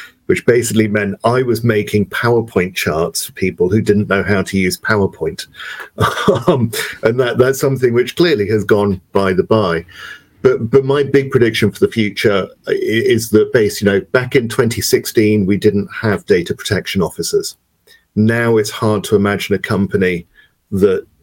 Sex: male